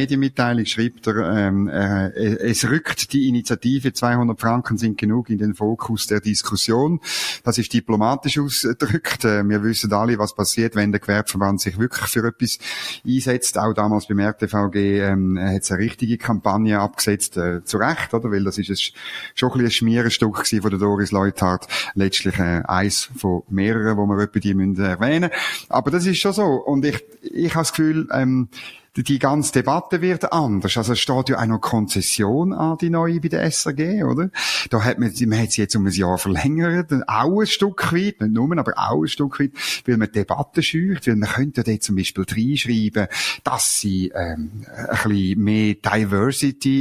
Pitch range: 100-135 Hz